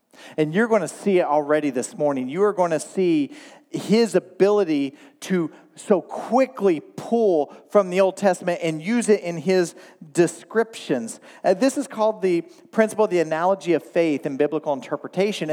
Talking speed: 170 wpm